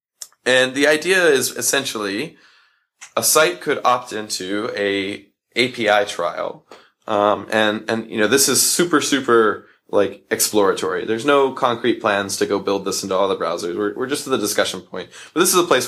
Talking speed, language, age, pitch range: 180 wpm, German, 20-39, 105-130 Hz